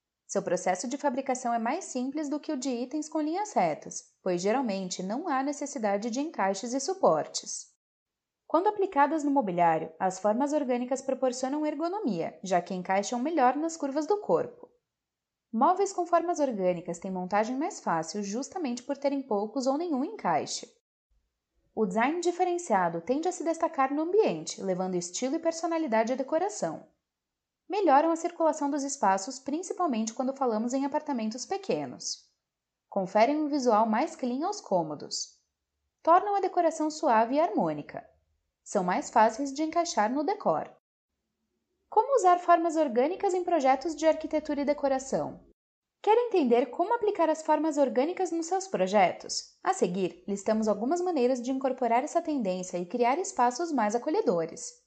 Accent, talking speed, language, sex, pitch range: Brazilian, 150 wpm, Portuguese, female, 225-335 Hz